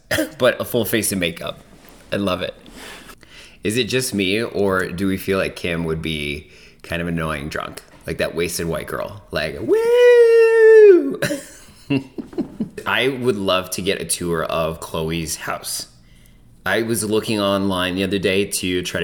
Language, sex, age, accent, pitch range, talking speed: English, male, 30-49, American, 85-120 Hz, 160 wpm